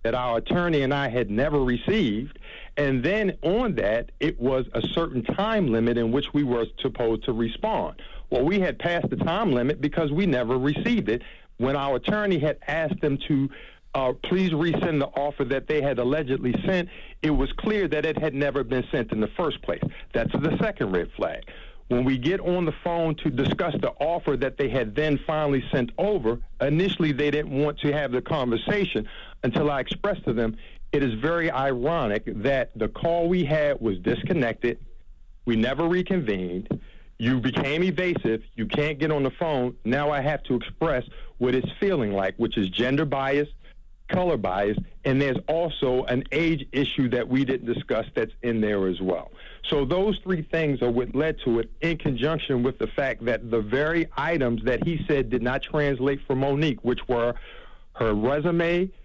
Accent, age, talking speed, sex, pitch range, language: American, 50-69, 190 wpm, male, 125-165 Hz, English